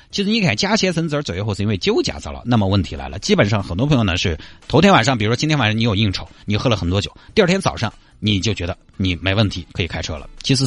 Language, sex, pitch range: Chinese, male, 90-130 Hz